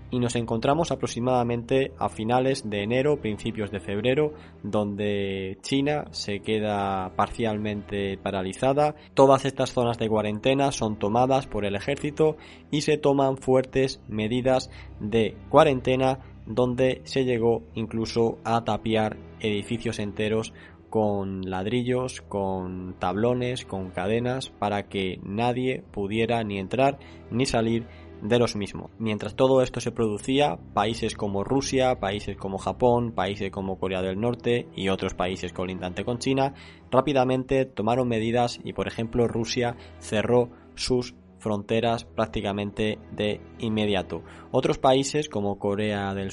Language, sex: Spanish, male